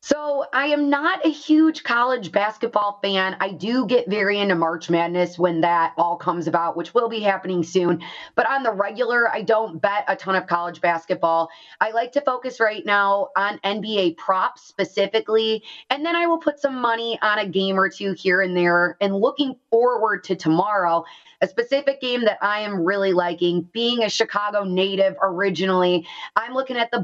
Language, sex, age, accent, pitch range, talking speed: English, female, 20-39, American, 185-240 Hz, 190 wpm